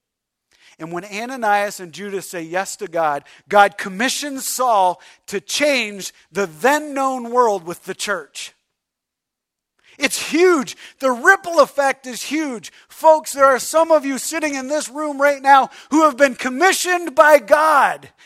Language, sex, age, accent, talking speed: English, male, 40-59, American, 150 wpm